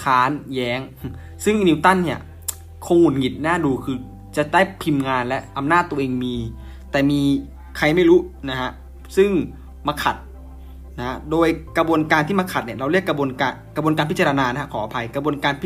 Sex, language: male, Thai